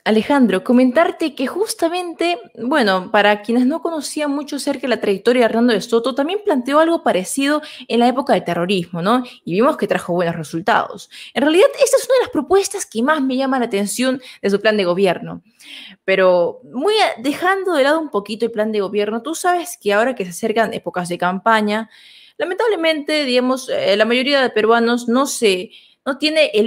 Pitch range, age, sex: 210-310 Hz, 20-39, female